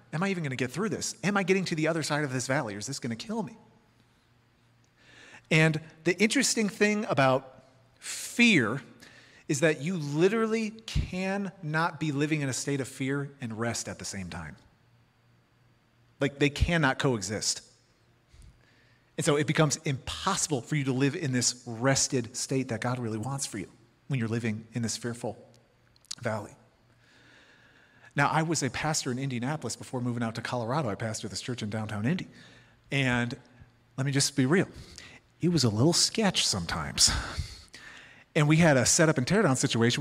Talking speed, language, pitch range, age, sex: 180 wpm, English, 120-160 Hz, 40-59, male